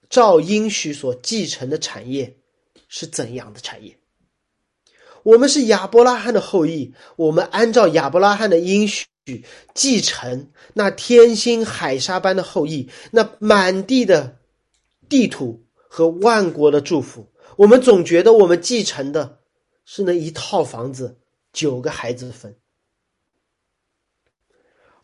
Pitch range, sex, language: 160-250 Hz, male, Chinese